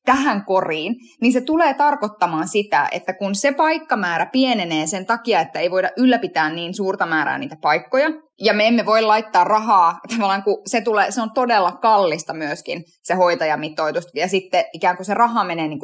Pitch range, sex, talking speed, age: 180-245 Hz, female, 175 wpm, 20-39